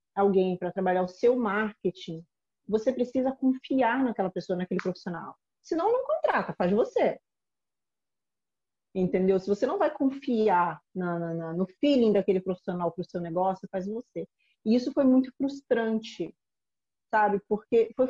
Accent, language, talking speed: Brazilian, Portuguese, 155 wpm